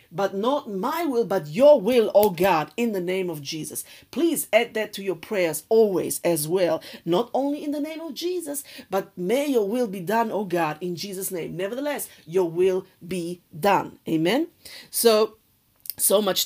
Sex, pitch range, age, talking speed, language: female, 165-215 Hz, 50-69, 180 wpm, English